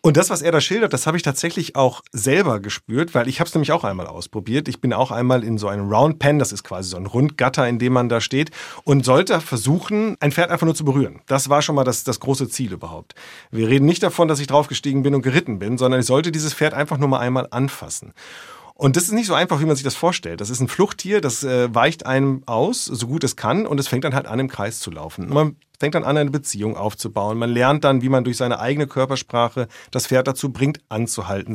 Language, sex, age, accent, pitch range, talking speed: German, male, 30-49, German, 115-145 Hz, 255 wpm